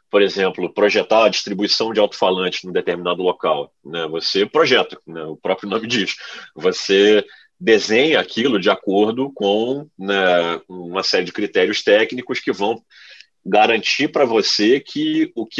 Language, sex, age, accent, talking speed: Portuguese, male, 30-49, Brazilian, 155 wpm